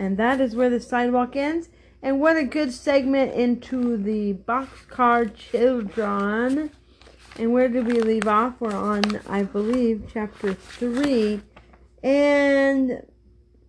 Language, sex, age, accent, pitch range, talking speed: English, female, 40-59, American, 200-265 Hz, 125 wpm